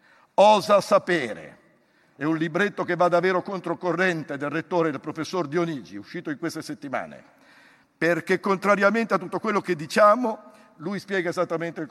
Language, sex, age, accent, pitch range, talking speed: Italian, male, 50-69, native, 160-205 Hz, 150 wpm